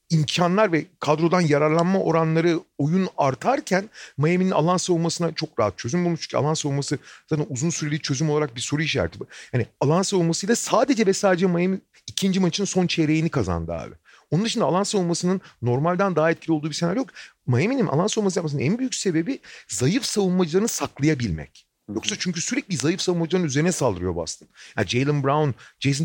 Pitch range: 130-185 Hz